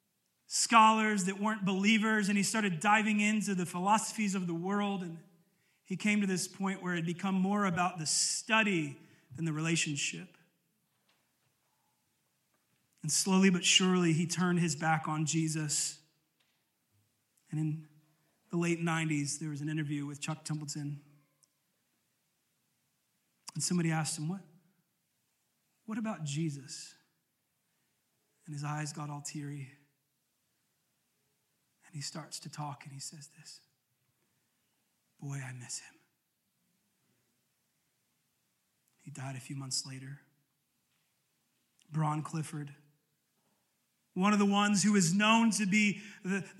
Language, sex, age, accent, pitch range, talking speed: English, male, 30-49, American, 150-190 Hz, 125 wpm